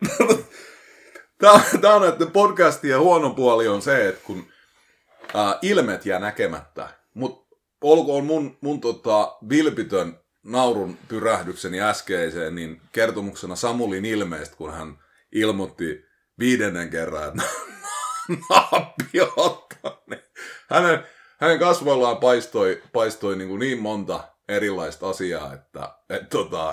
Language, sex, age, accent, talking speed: Finnish, male, 30-49, native, 110 wpm